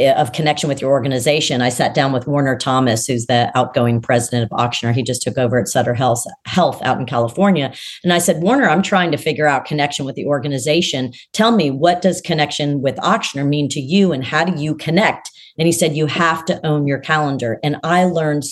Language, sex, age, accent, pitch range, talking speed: English, female, 40-59, American, 140-180 Hz, 220 wpm